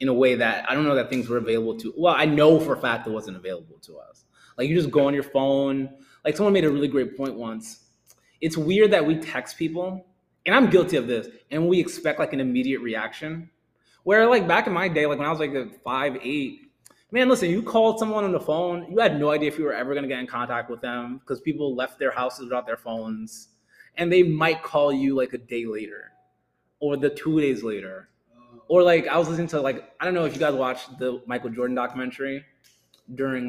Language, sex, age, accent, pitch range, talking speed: English, male, 20-39, American, 125-185 Hz, 235 wpm